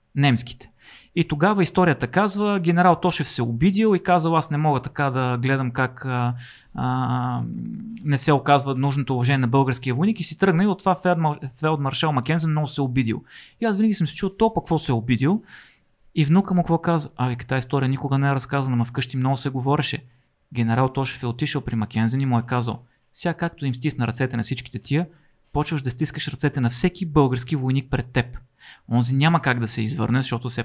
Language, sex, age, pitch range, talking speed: Bulgarian, male, 30-49, 125-155 Hz, 200 wpm